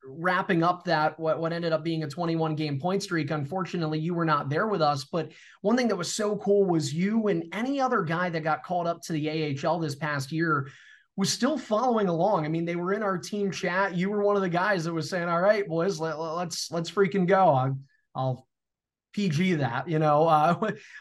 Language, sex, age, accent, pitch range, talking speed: English, male, 20-39, American, 155-185 Hz, 225 wpm